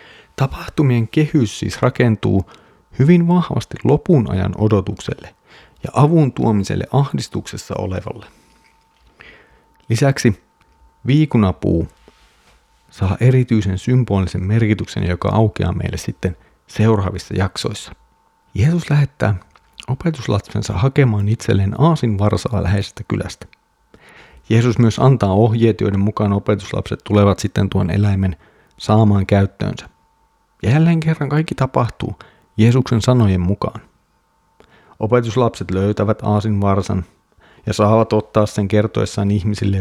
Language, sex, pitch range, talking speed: Finnish, male, 100-130 Hz, 100 wpm